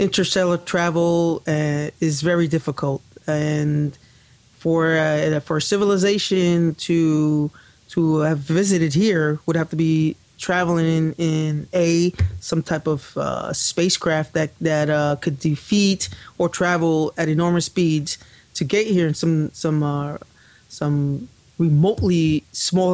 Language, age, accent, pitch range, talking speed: English, 20-39, American, 145-170 Hz, 130 wpm